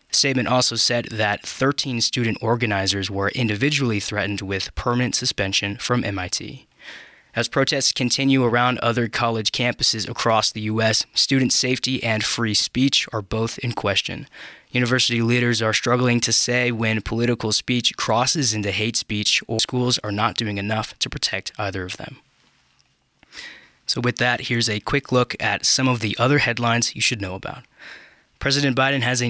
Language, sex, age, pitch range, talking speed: English, male, 20-39, 110-125 Hz, 165 wpm